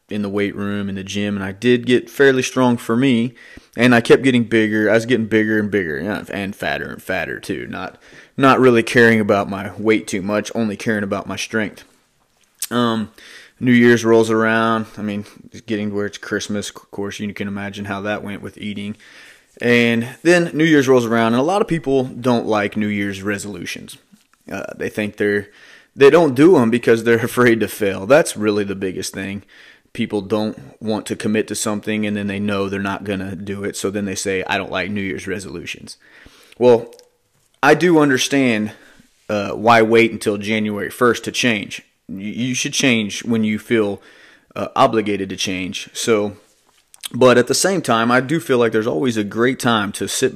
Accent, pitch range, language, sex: American, 100-120 Hz, English, male